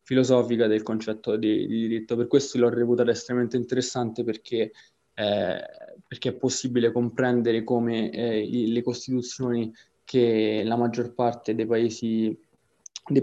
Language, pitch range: Italian, 115-125 Hz